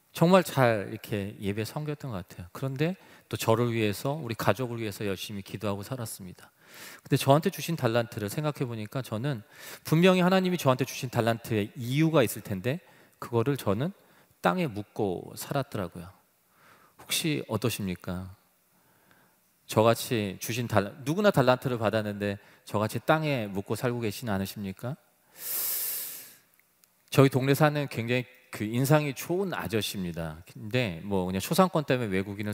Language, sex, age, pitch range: Korean, male, 30-49, 100-145 Hz